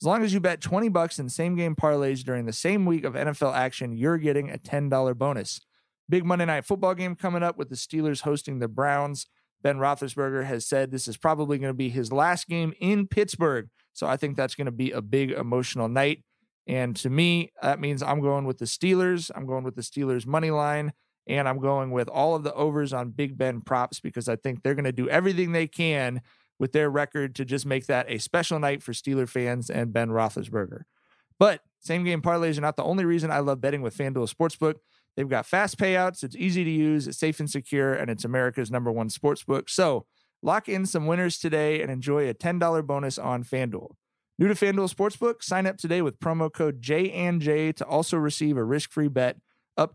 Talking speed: 215 wpm